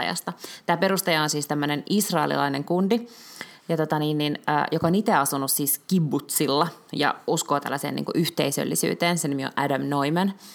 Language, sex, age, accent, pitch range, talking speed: Finnish, female, 20-39, native, 140-185 Hz, 160 wpm